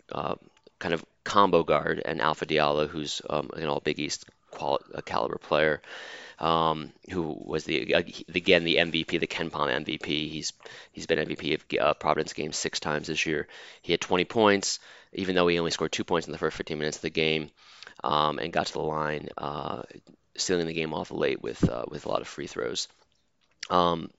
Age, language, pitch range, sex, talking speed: 30-49, English, 80-85 Hz, male, 195 wpm